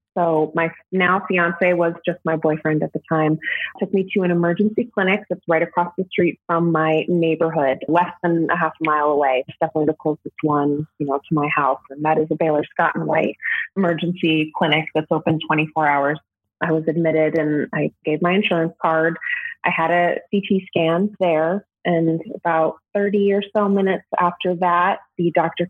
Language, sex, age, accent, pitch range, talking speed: English, female, 20-39, American, 155-180 Hz, 190 wpm